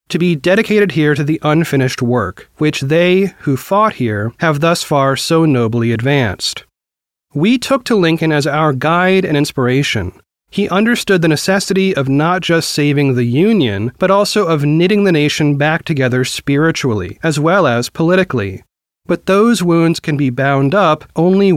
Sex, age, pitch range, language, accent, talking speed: male, 30-49, 125-185 Hz, English, American, 165 wpm